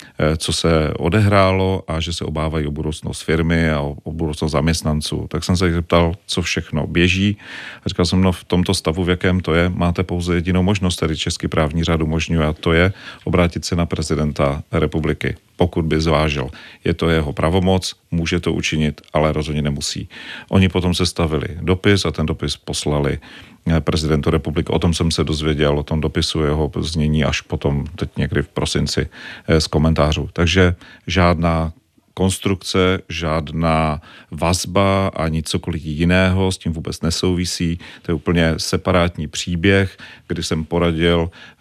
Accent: native